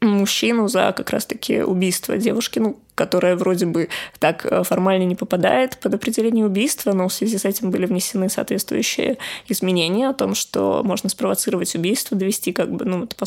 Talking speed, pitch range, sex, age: 170 wpm, 190-220 Hz, female, 20-39